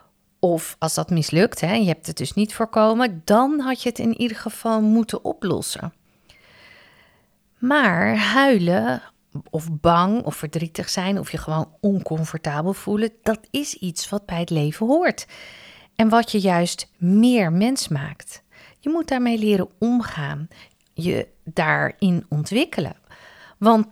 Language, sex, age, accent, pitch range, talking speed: Dutch, female, 40-59, Dutch, 165-225 Hz, 140 wpm